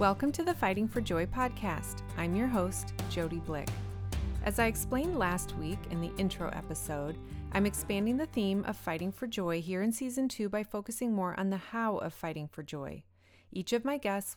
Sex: female